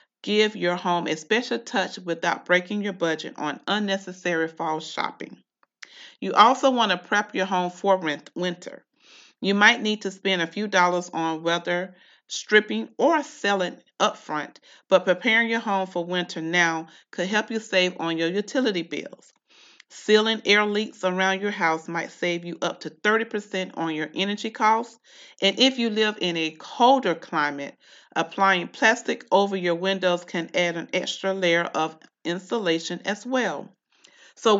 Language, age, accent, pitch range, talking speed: English, 40-59, American, 170-210 Hz, 160 wpm